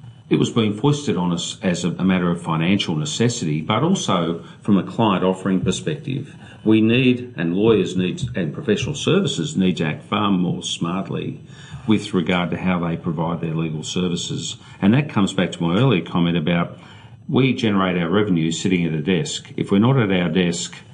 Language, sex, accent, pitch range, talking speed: English, male, Australian, 85-115 Hz, 185 wpm